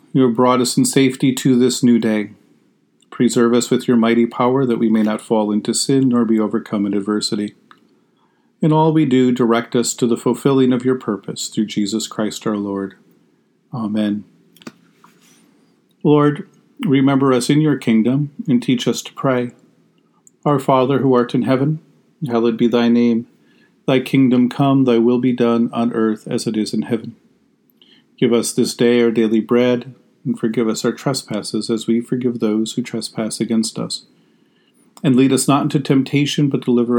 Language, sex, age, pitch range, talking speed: English, male, 40-59, 115-130 Hz, 175 wpm